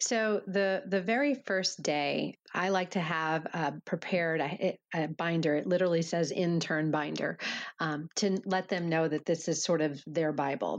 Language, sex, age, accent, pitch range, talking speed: English, female, 30-49, American, 155-185 Hz, 180 wpm